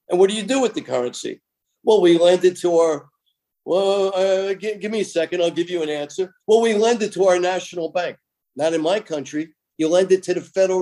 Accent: American